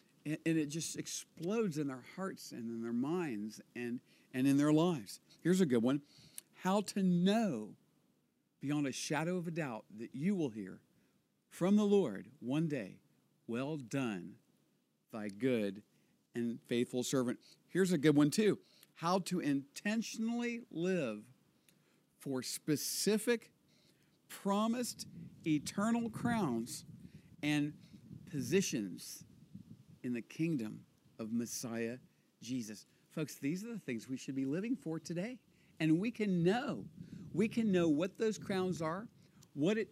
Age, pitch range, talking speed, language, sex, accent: 50-69, 135-190 Hz, 135 wpm, English, male, American